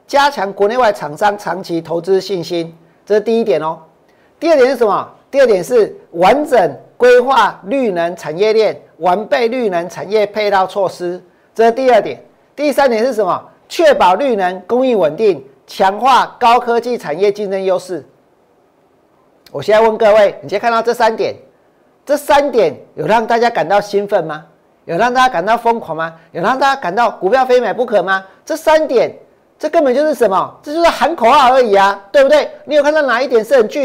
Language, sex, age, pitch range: Chinese, male, 50-69, 195-275 Hz